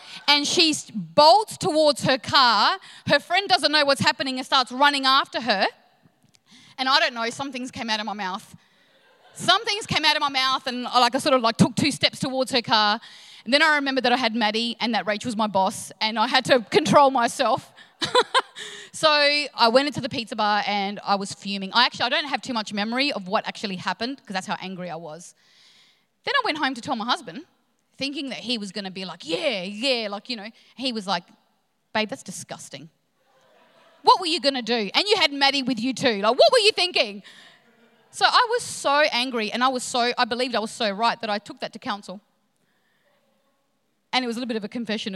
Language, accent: English, Australian